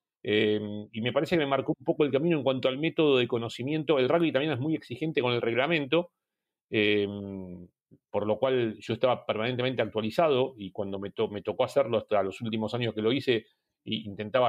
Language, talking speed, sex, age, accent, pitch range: Spanish, 205 wpm, male, 40-59, Argentinian, 115-160 Hz